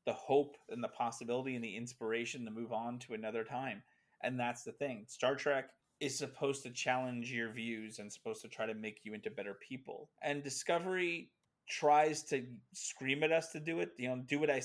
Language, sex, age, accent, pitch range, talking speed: English, male, 30-49, American, 110-130 Hz, 210 wpm